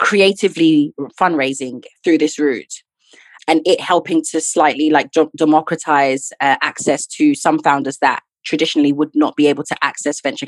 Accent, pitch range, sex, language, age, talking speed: British, 150-185 Hz, female, English, 20-39, 150 wpm